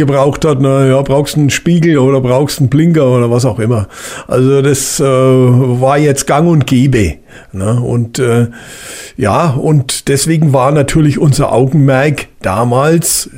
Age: 50-69